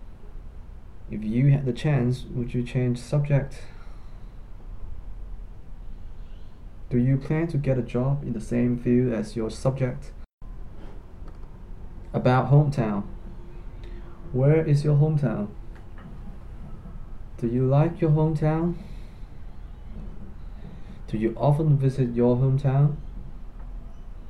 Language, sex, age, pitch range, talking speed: English, male, 20-39, 90-130 Hz, 100 wpm